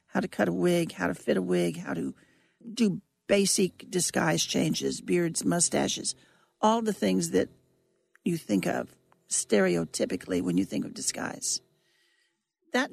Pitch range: 170-200 Hz